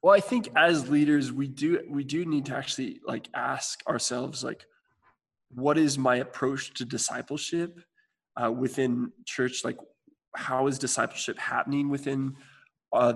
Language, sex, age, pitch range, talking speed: English, male, 20-39, 125-155 Hz, 145 wpm